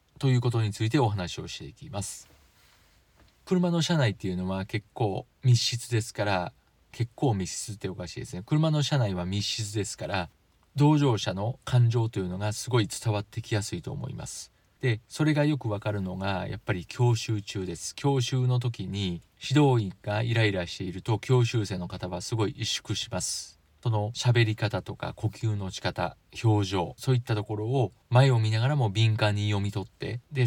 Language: Japanese